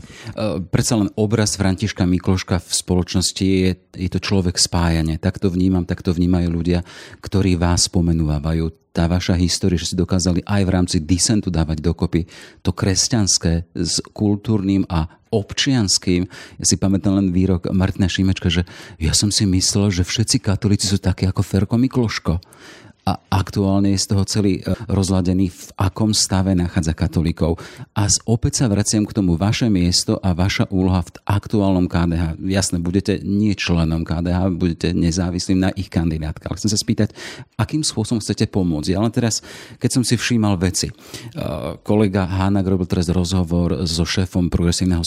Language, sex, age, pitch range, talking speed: Slovak, male, 40-59, 90-105 Hz, 160 wpm